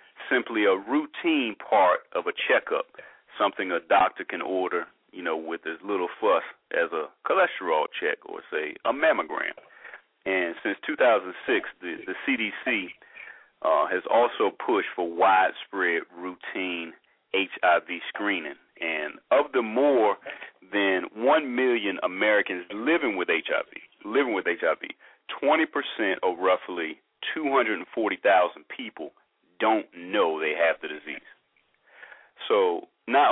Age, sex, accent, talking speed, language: 40-59, male, American, 135 wpm, English